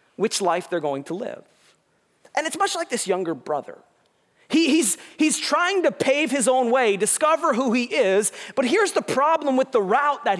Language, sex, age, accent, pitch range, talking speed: English, male, 40-59, American, 190-290 Hz, 190 wpm